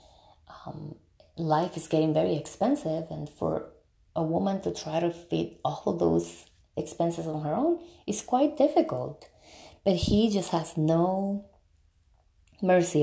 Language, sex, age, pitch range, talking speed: English, female, 20-39, 150-215 Hz, 140 wpm